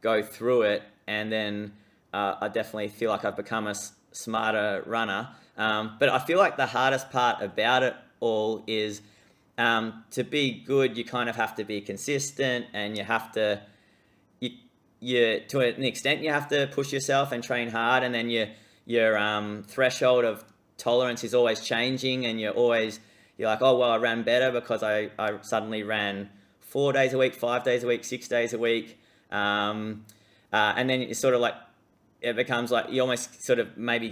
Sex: male